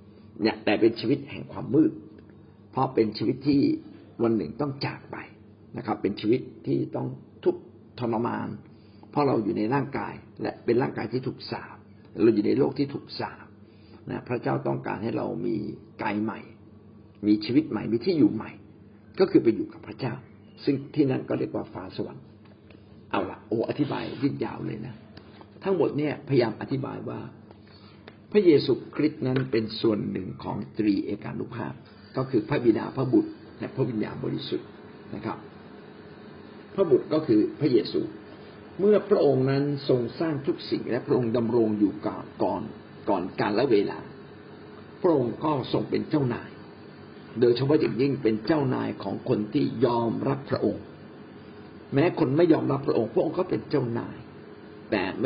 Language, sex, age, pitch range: Thai, male, 60-79, 105-145 Hz